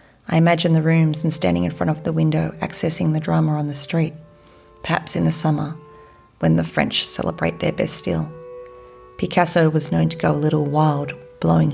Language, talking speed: English, 190 wpm